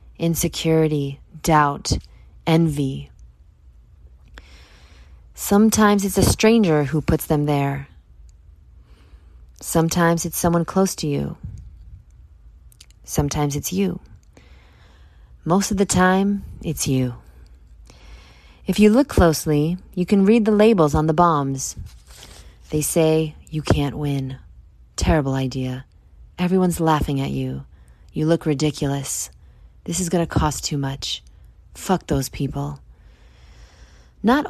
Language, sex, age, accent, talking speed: English, female, 20-39, American, 110 wpm